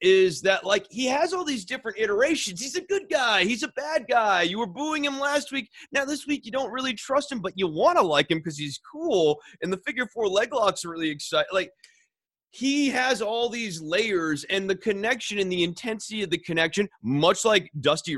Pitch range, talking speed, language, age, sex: 160-255 Hz, 220 wpm, English, 30-49, male